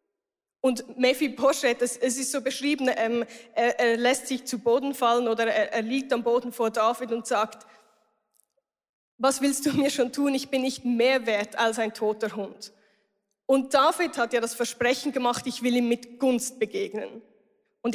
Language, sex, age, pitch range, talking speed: German, female, 10-29, 230-275 Hz, 185 wpm